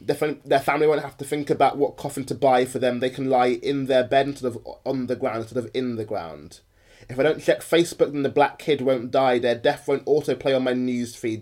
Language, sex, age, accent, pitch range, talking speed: English, male, 20-39, British, 125-140 Hz, 245 wpm